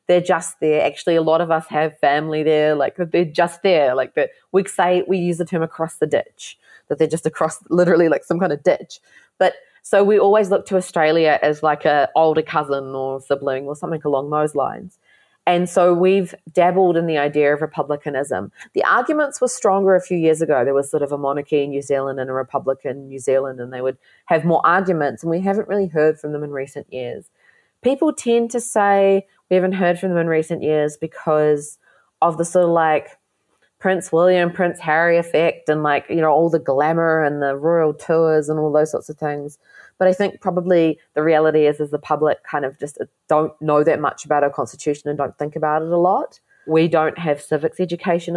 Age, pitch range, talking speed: 20-39, 150-180 Hz, 215 wpm